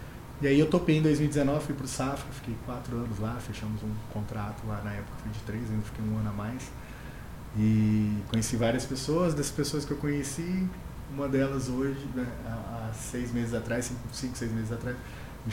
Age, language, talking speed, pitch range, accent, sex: 20-39, Portuguese, 195 wpm, 110-135 Hz, Brazilian, male